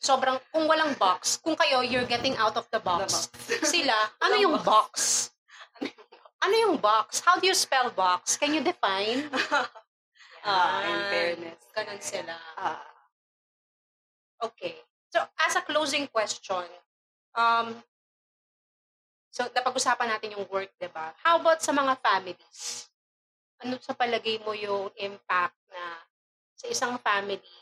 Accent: native